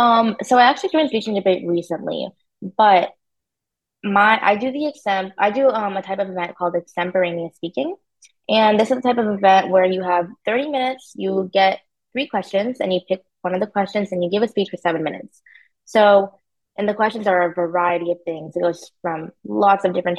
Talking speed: 210 wpm